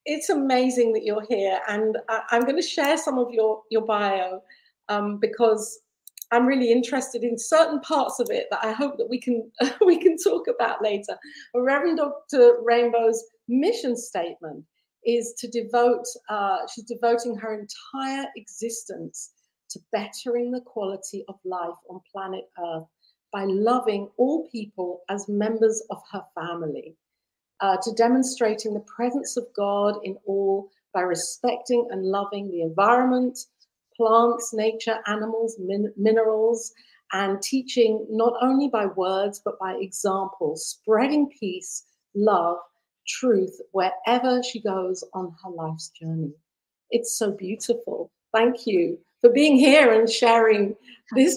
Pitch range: 195-245 Hz